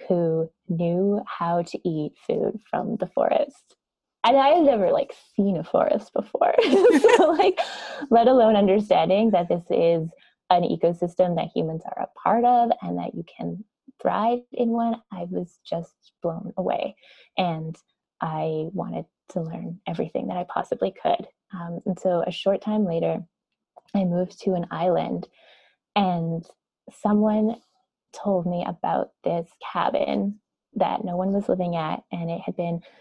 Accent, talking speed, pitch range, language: American, 155 wpm, 175-215 Hz, English